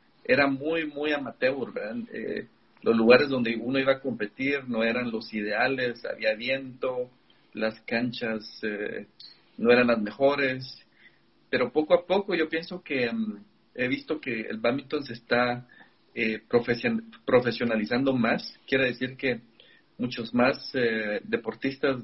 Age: 40-59